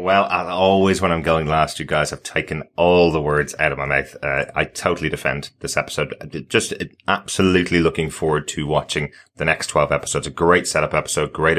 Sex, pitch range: male, 75-85 Hz